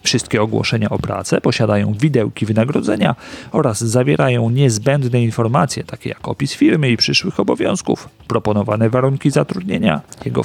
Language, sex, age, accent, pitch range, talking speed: Polish, male, 40-59, native, 105-125 Hz, 125 wpm